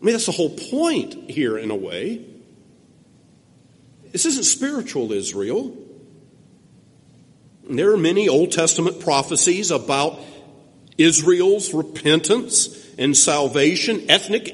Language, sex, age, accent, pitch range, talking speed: English, male, 50-69, American, 155-230 Hz, 105 wpm